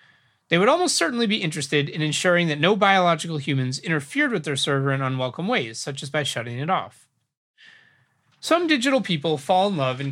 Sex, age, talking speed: male, 30-49, 190 wpm